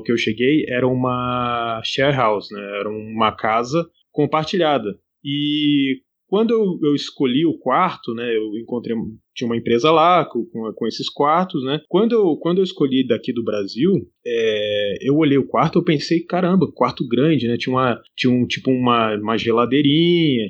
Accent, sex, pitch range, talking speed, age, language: Brazilian, male, 120-165 Hz, 170 wpm, 20-39, Portuguese